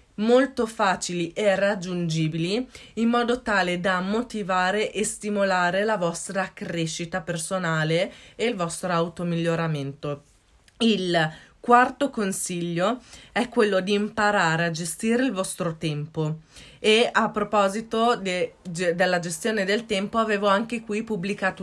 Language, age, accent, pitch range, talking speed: Italian, 20-39, native, 170-205 Hz, 120 wpm